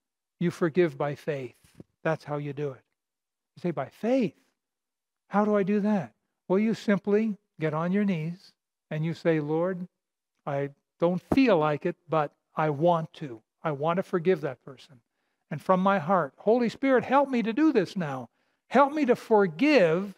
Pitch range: 155-205 Hz